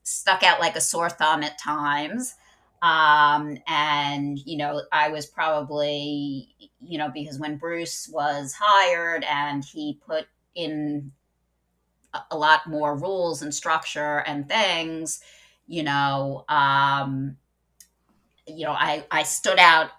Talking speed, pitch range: 130 wpm, 145-155 Hz